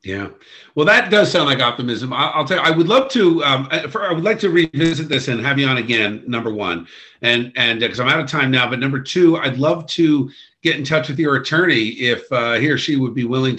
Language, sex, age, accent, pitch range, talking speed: English, male, 50-69, American, 125-155 Hz, 260 wpm